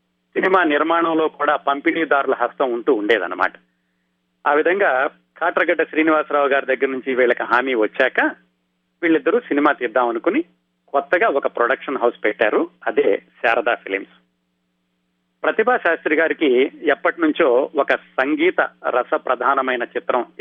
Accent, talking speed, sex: native, 110 wpm, male